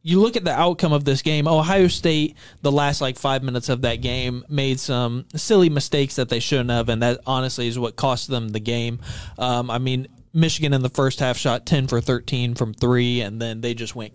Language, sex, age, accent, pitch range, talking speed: English, male, 30-49, American, 120-155 Hz, 230 wpm